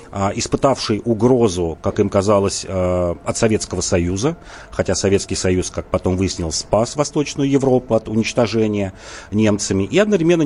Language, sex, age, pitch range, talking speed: Russian, male, 40-59, 95-130 Hz, 125 wpm